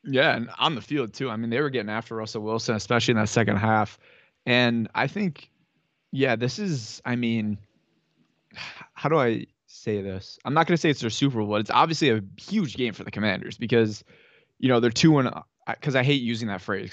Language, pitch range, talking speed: English, 110-130 Hz, 215 wpm